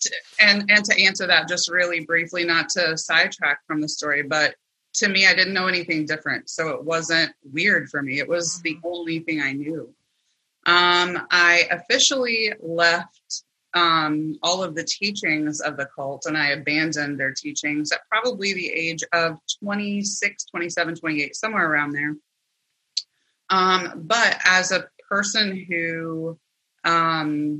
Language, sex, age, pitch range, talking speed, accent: English, female, 30-49, 160-190 Hz, 150 wpm, American